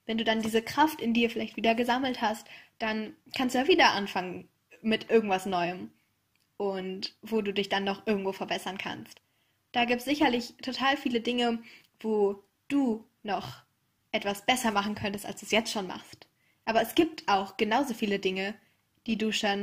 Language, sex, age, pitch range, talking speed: German, female, 10-29, 200-250 Hz, 180 wpm